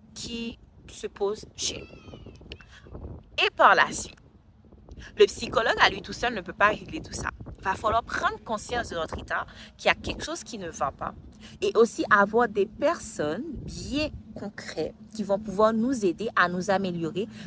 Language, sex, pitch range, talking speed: French, female, 175-240 Hz, 180 wpm